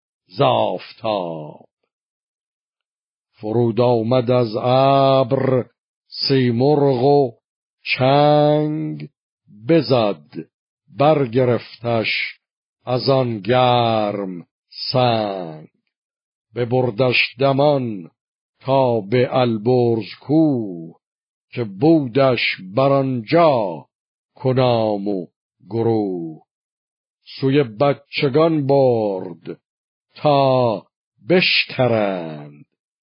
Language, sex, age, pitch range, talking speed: Persian, male, 50-69, 110-135 Hz, 60 wpm